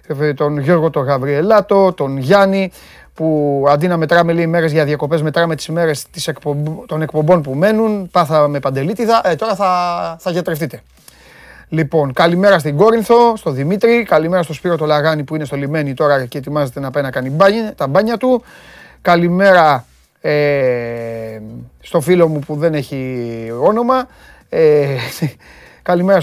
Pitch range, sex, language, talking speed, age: 140-185 Hz, male, Greek, 145 wpm, 30-49